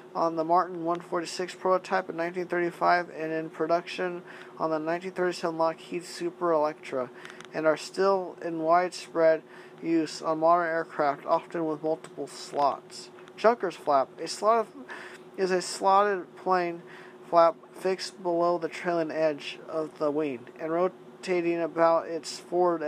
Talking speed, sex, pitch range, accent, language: 155 wpm, male, 160-185 Hz, American, English